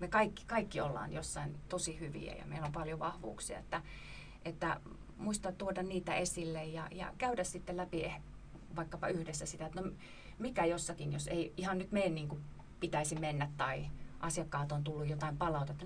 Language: Finnish